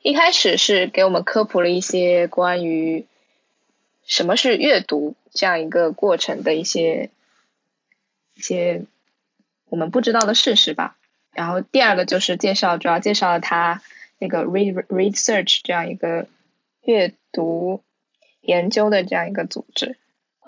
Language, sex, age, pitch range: Chinese, female, 10-29, 180-230 Hz